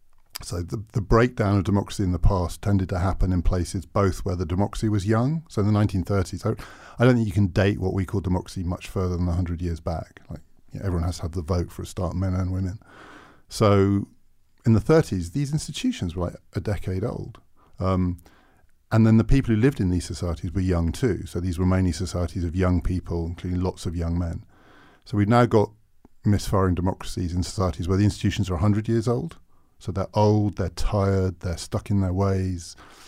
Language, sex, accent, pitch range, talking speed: English, male, British, 90-110 Hz, 210 wpm